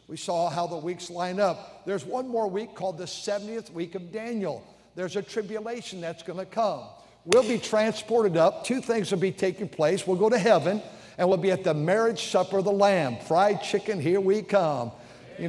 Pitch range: 140-195 Hz